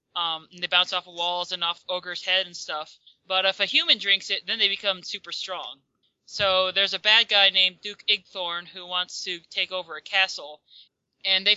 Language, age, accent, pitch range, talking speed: English, 20-39, American, 170-195 Hz, 215 wpm